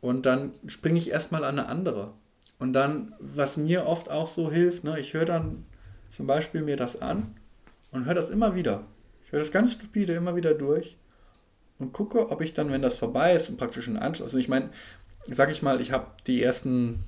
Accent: German